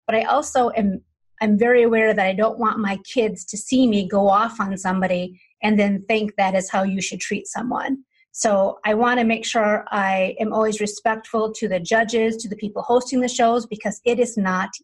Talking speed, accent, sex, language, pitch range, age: 210 wpm, American, female, English, 205-240 Hz, 30-49